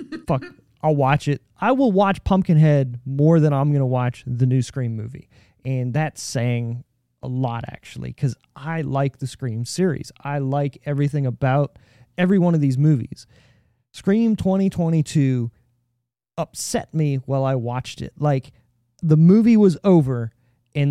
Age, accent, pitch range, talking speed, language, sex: 30-49, American, 125-160 Hz, 150 wpm, English, male